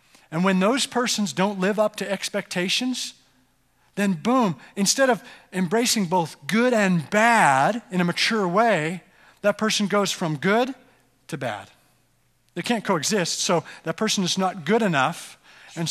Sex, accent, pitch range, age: male, American, 150-205 Hz, 40-59